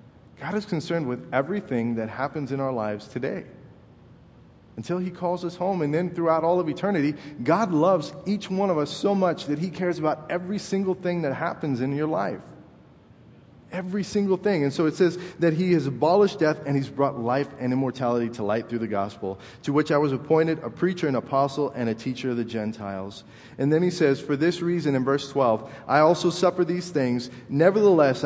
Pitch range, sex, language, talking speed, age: 130-175 Hz, male, English, 205 wpm, 30-49